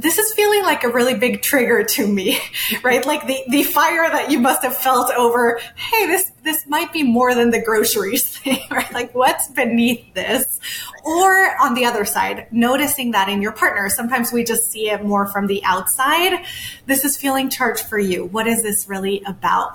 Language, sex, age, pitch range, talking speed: English, female, 20-39, 215-270 Hz, 200 wpm